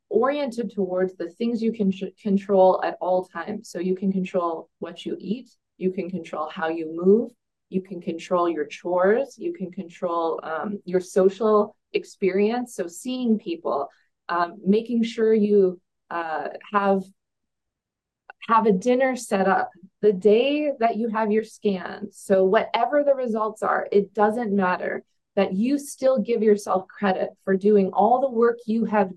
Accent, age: American, 20-39